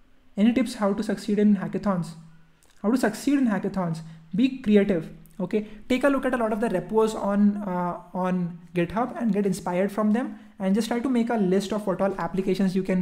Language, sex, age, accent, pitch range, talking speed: English, male, 20-39, Indian, 170-200 Hz, 210 wpm